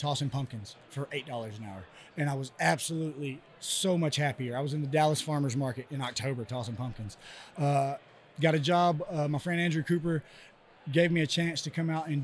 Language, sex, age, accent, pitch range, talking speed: English, male, 20-39, American, 140-165 Hz, 200 wpm